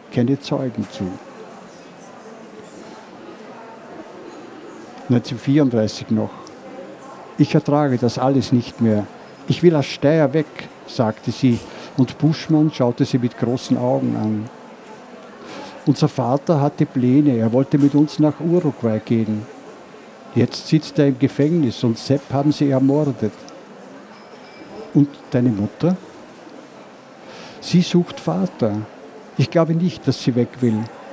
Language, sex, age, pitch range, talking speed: German, male, 60-79, 125-155 Hz, 115 wpm